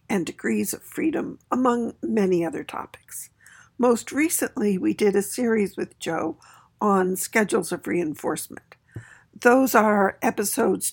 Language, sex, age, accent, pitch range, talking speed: English, female, 60-79, American, 200-260 Hz, 125 wpm